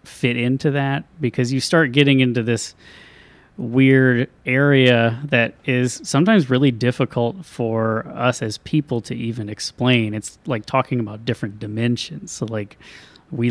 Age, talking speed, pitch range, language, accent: 30-49, 140 wpm, 115-135 Hz, English, American